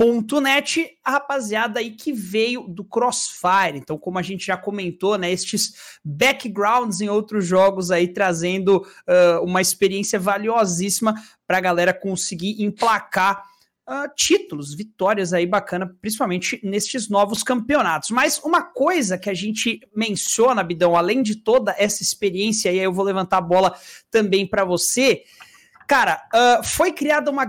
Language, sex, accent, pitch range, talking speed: Portuguese, male, Brazilian, 195-260 Hz, 150 wpm